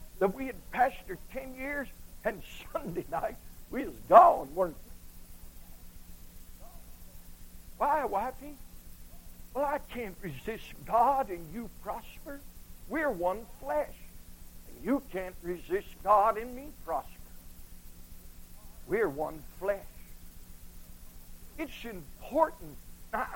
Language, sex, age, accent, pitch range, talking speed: English, male, 60-79, American, 200-285 Hz, 105 wpm